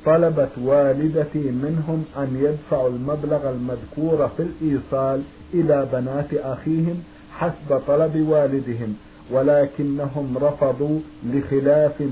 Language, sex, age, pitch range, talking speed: Arabic, male, 50-69, 135-150 Hz, 90 wpm